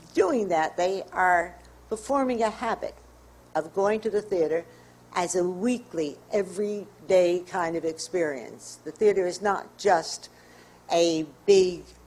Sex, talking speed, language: female, 135 wpm, English